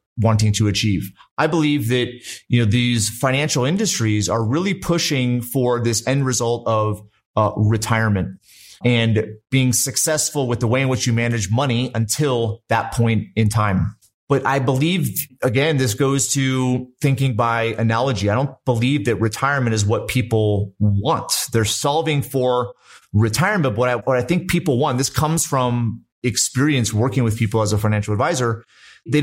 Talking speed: 165 wpm